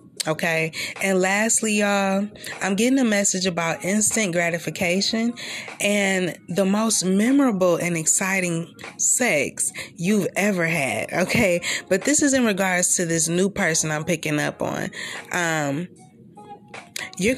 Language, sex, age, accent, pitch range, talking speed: English, female, 20-39, American, 165-195 Hz, 130 wpm